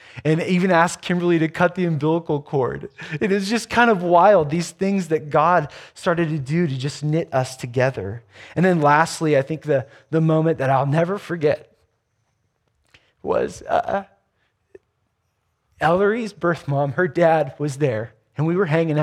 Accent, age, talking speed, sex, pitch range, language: American, 20-39, 165 wpm, male, 130-180 Hz, English